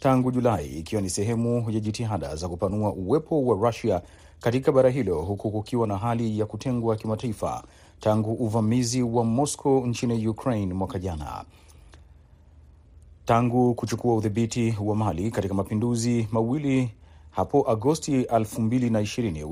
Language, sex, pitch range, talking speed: Swahili, male, 100-120 Hz, 125 wpm